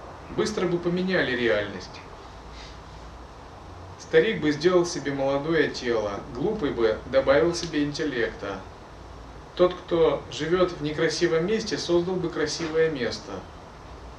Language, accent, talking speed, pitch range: Russian, native, 105 wpm, 120-175 Hz